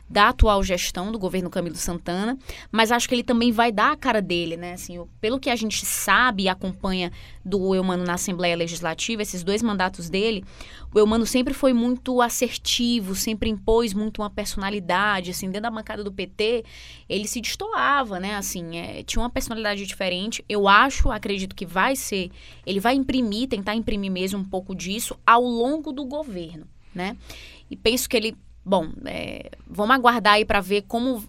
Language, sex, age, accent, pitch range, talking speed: Portuguese, female, 10-29, Brazilian, 190-235 Hz, 180 wpm